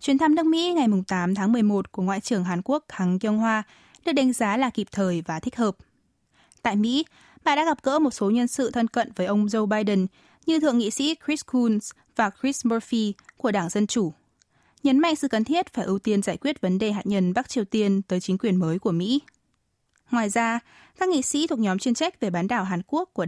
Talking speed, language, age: 235 wpm, Vietnamese, 20-39